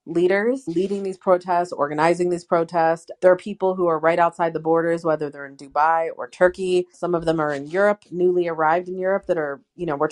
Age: 30-49